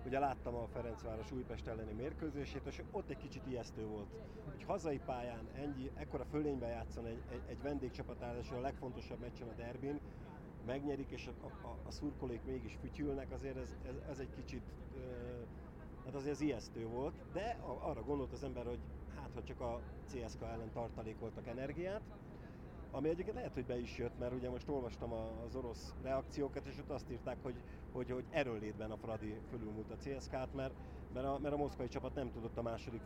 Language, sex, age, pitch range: Hungarian, male, 30-49, 110-135 Hz